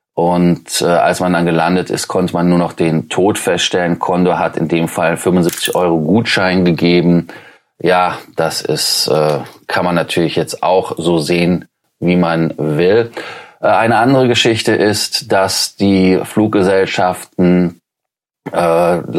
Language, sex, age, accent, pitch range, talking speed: German, male, 30-49, German, 85-95 Hz, 145 wpm